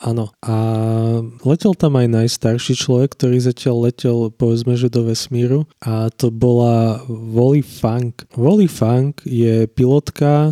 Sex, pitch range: male, 115-130 Hz